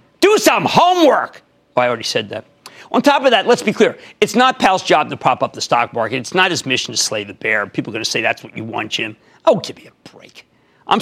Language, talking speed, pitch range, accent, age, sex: English, 270 wpm, 135-210 Hz, American, 50-69, male